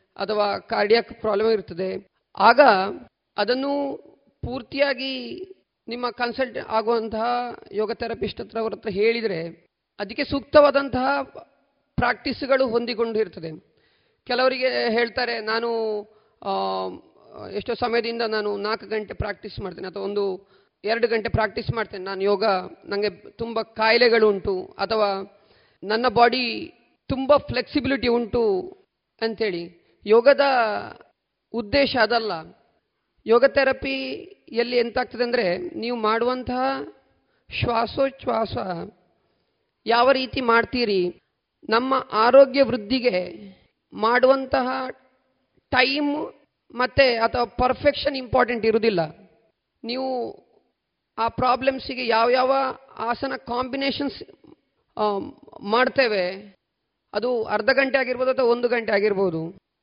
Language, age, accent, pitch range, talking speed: Kannada, 40-59, native, 215-260 Hz, 85 wpm